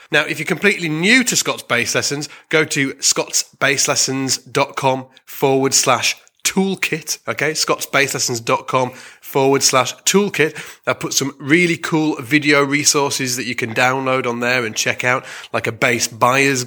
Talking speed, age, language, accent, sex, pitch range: 145 wpm, 20-39, English, British, male, 120-150 Hz